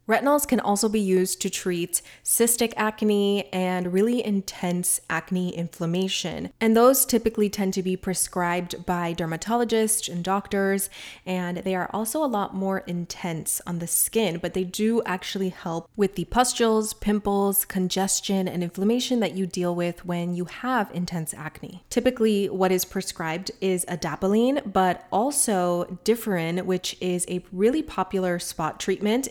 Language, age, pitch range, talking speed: English, 20-39, 175-215 Hz, 150 wpm